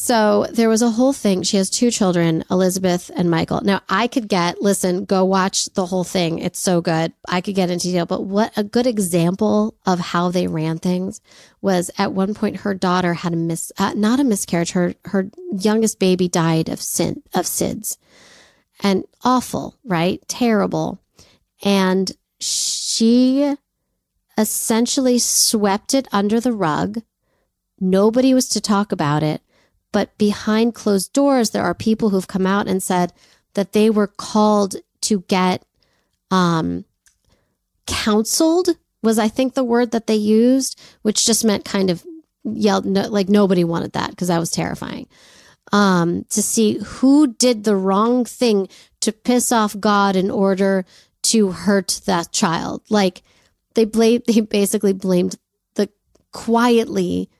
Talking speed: 155 wpm